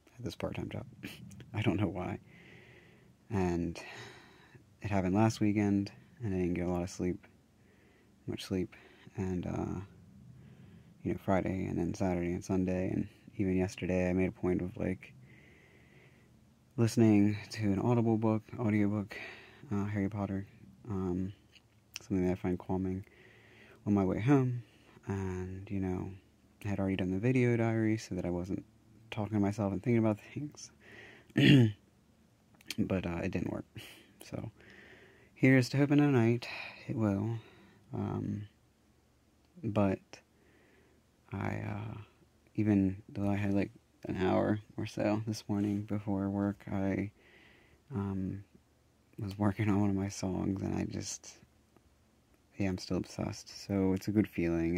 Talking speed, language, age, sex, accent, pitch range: 145 wpm, English, 20-39, male, American, 95-110 Hz